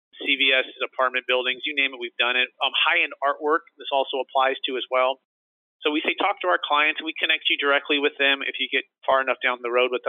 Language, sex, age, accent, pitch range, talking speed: English, male, 30-49, American, 130-160 Hz, 245 wpm